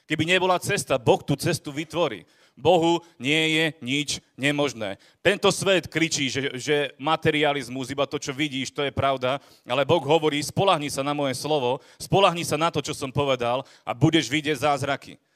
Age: 30-49